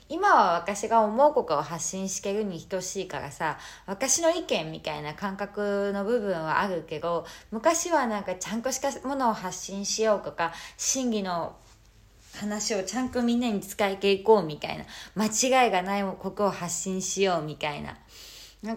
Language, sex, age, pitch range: Japanese, female, 20-39, 175-235 Hz